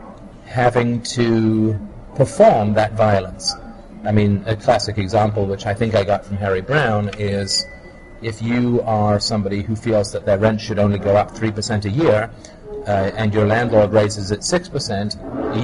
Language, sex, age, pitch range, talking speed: English, male, 40-59, 100-120 Hz, 160 wpm